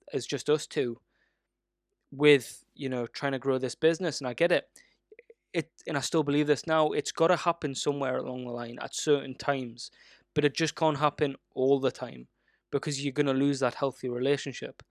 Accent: British